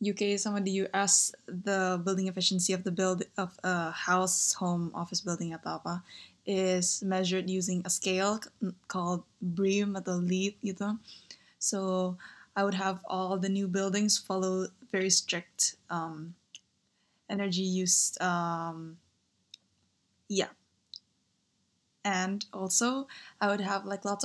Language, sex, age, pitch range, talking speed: Indonesian, female, 20-39, 185-210 Hz, 140 wpm